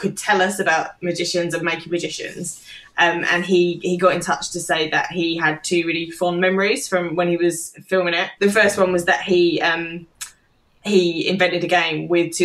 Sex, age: female, 20-39